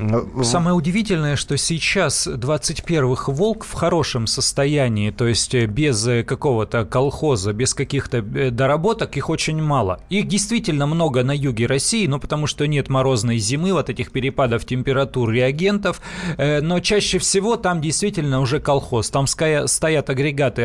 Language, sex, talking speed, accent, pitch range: Russian, male, 140 wpm, native, 130-160 Hz